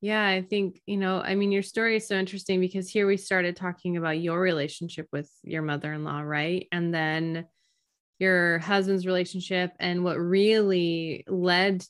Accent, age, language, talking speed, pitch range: American, 20-39, English, 165 wpm, 165-190 Hz